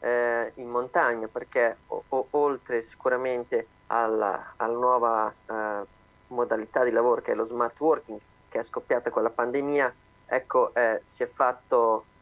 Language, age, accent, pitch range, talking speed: Italian, 30-49, native, 115-135 Hz, 145 wpm